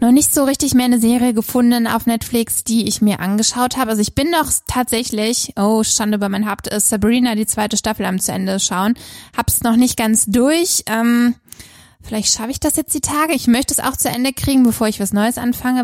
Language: German